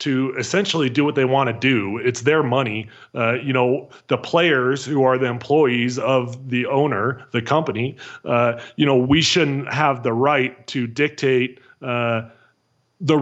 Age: 30-49